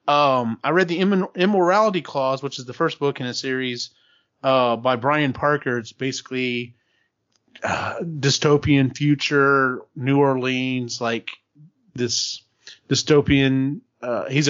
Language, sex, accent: English, male, American